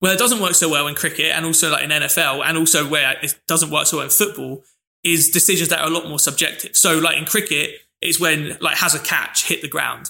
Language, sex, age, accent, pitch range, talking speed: English, male, 20-39, British, 155-190 Hz, 260 wpm